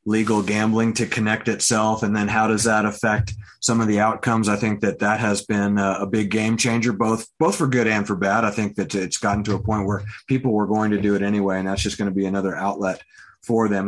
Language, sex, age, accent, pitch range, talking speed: English, male, 30-49, American, 100-110 Hz, 250 wpm